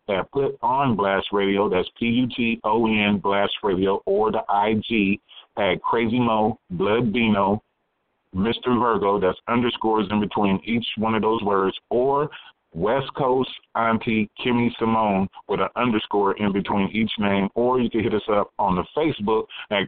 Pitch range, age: 95-110 Hz, 40-59